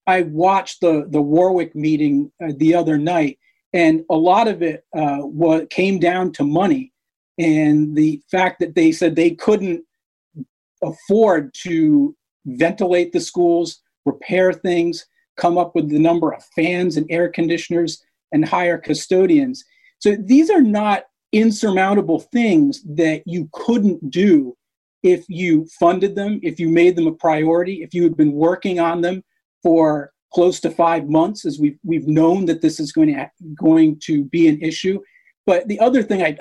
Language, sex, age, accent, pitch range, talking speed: English, male, 40-59, American, 160-220 Hz, 165 wpm